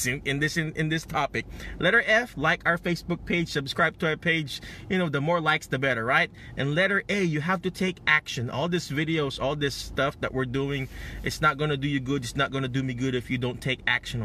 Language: English